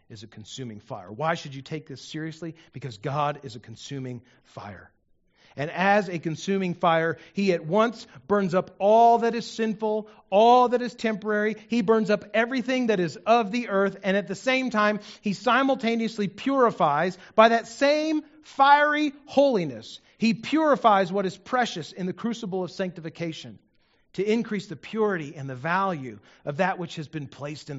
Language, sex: English, male